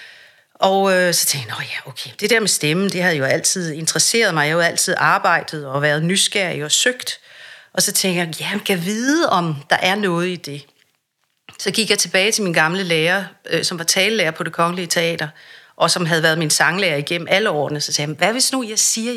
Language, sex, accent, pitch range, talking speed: Danish, female, native, 165-220 Hz, 225 wpm